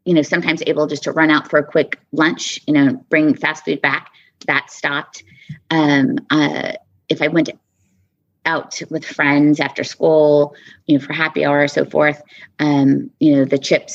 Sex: female